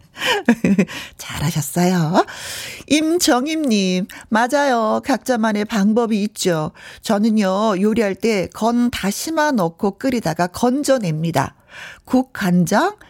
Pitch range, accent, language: 170-260 Hz, native, Korean